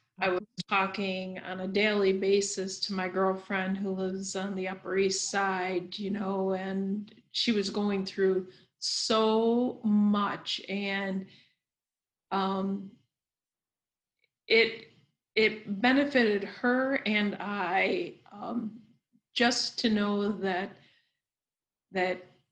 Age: 40-59